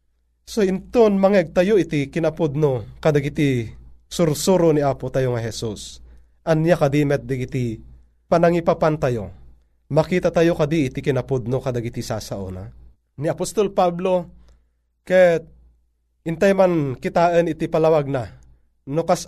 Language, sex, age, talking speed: Filipino, male, 30-49, 125 wpm